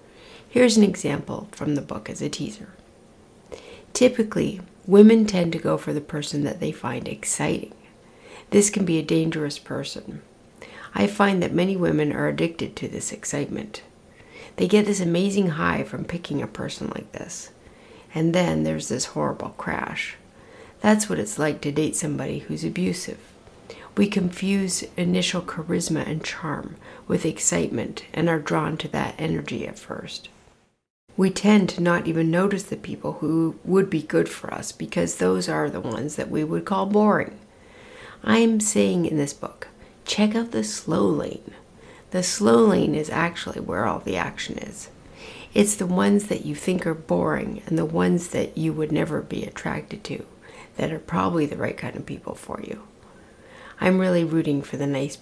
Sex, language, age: female, English, 60-79